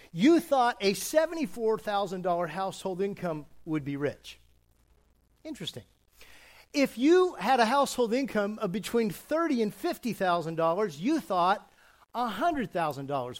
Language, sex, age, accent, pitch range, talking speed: English, male, 50-69, American, 165-250 Hz, 110 wpm